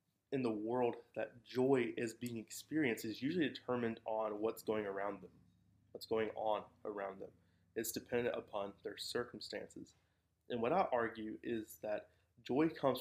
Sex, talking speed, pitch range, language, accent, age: male, 155 wpm, 105-125 Hz, English, American, 20-39